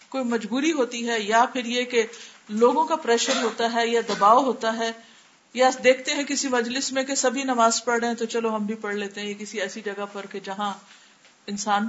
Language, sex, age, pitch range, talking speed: Urdu, female, 50-69, 215-285 Hz, 215 wpm